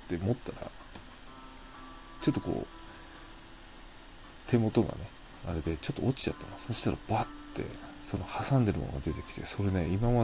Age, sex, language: 40-59, male, Japanese